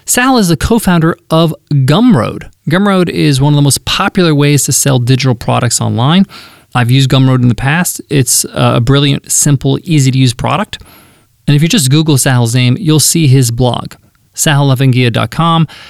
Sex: male